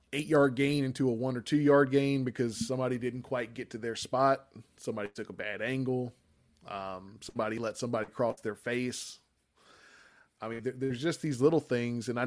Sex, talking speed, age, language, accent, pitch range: male, 190 wpm, 20-39, English, American, 120-145 Hz